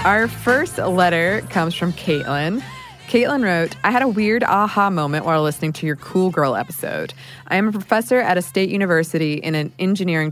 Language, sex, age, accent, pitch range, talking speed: English, female, 20-39, American, 145-190 Hz, 185 wpm